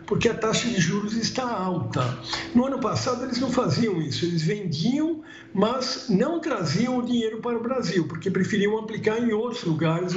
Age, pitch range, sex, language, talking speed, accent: 60-79, 170-230 Hz, male, Portuguese, 175 wpm, Brazilian